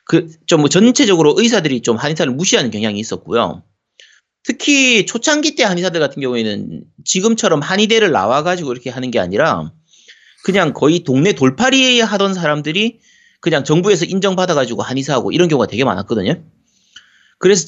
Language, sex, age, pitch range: Korean, male, 30-49, 140-220 Hz